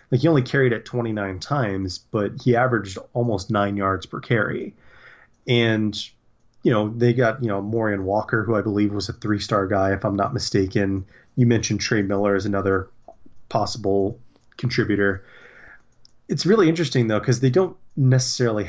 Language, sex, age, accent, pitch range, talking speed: English, male, 30-49, American, 100-130 Hz, 165 wpm